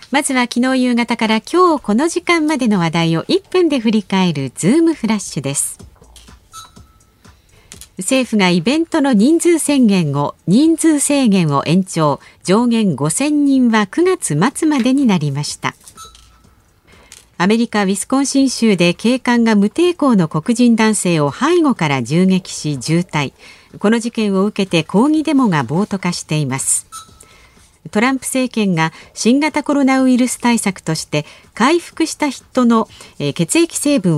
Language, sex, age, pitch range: Japanese, female, 50-69, 175-265 Hz